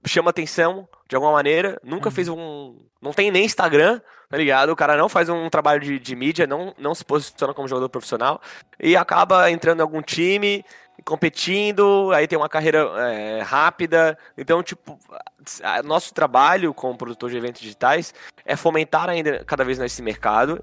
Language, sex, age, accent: Portuguese, male, 20-39, Brazilian